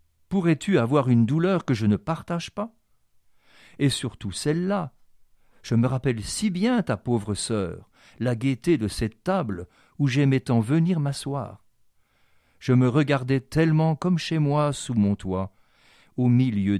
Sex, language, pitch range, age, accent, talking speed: male, French, 110-140 Hz, 50-69, French, 150 wpm